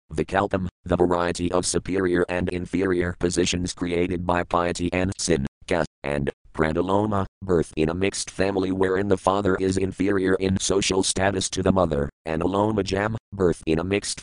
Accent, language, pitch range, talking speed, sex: American, English, 90-115 Hz, 165 wpm, male